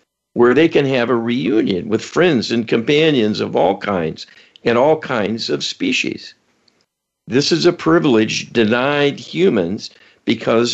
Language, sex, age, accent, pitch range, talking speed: English, male, 60-79, American, 105-130 Hz, 140 wpm